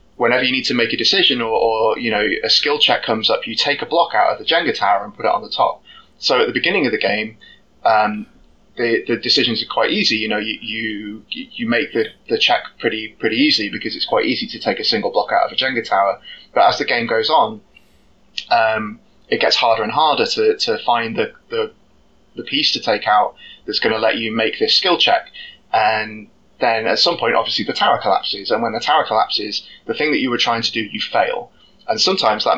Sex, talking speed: male, 240 wpm